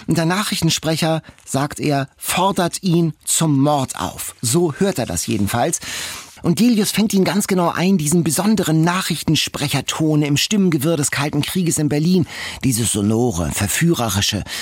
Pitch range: 130-175 Hz